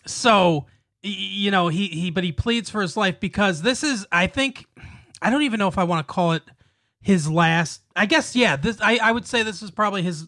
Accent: American